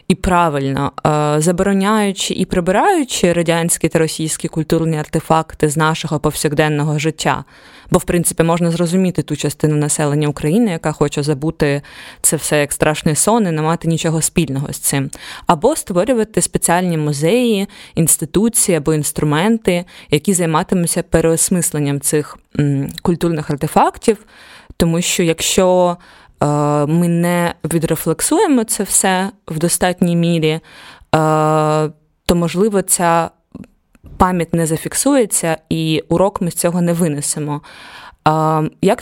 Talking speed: 120 wpm